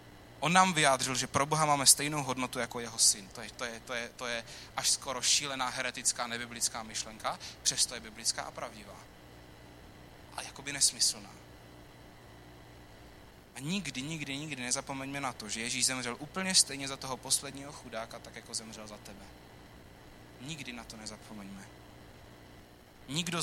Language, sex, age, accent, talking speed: Czech, male, 20-39, native, 155 wpm